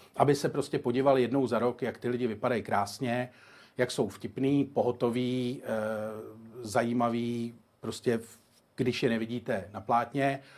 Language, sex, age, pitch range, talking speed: Czech, male, 40-59, 120-140 Hz, 140 wpm